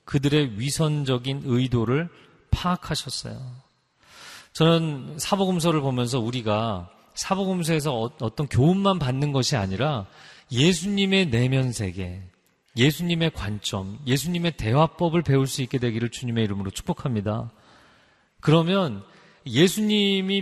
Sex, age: male, 40-59